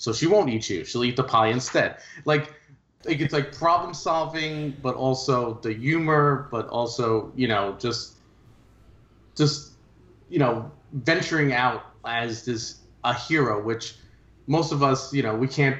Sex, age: male, 30-49